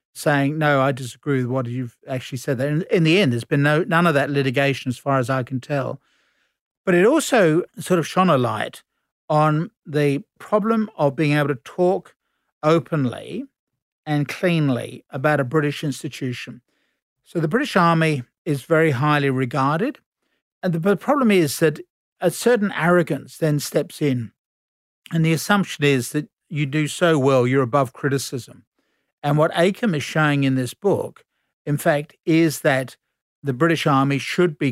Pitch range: 135-170 Hz